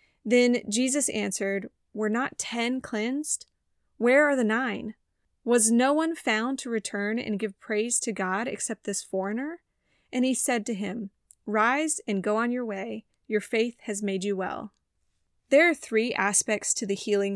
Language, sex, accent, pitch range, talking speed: English, female, American, 200-250 Hz, 170 wpm